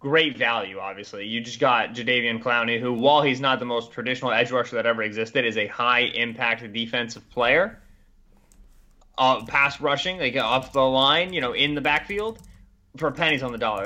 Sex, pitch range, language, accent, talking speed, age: male, 130-160 Hz, English, American, 195 wpm, 20-39